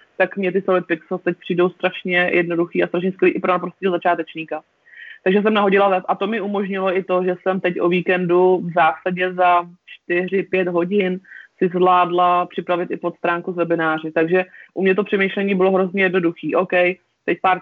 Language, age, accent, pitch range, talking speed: Czech, 30-49, native, 170-185 Hz, 180 wpm